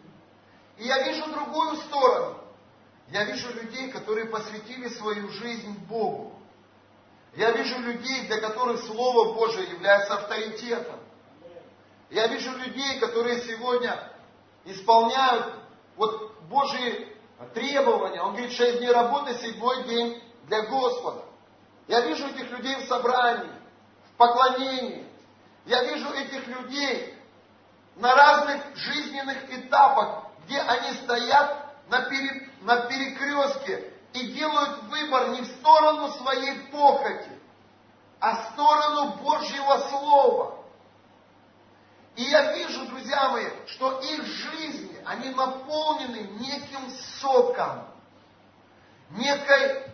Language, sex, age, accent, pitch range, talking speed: Russian, male, 40-59, native, 230-280 Hz, 105 wpm